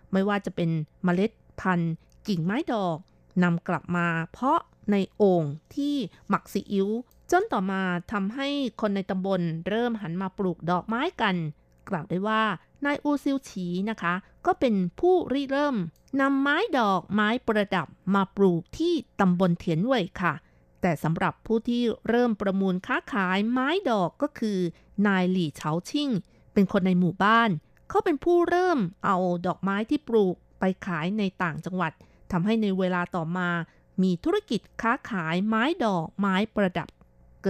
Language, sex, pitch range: Thai, female, 180-235 Hz